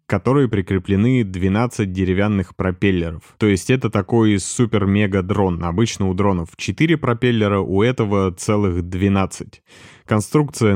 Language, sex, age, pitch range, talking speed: Russian, male, 20-39, 90-110 Hz, 115 wpm